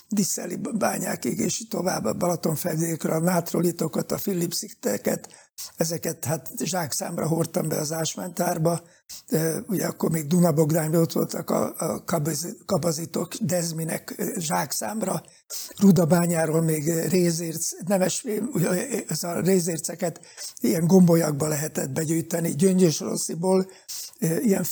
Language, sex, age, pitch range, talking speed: Hungarian, male, 60-79, 165-185 Hz, 105 wpm